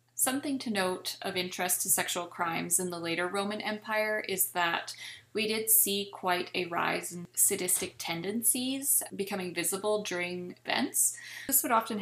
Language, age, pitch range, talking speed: English, 20-39, 170-195 Hz, 155 wpm